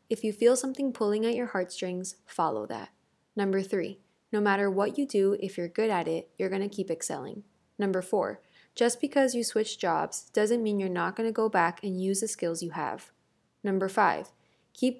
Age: 20-39